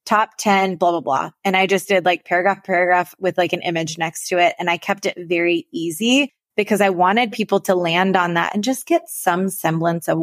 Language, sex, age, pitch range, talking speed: English, female, 20-39, 180-215 Hz, 230 wpm